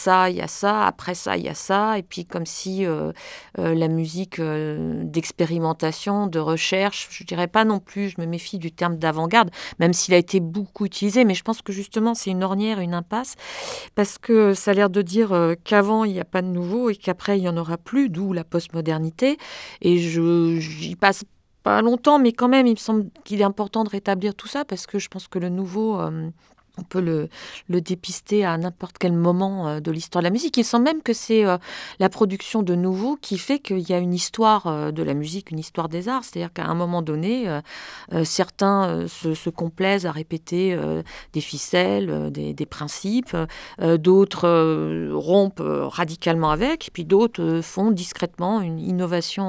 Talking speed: 200 wpm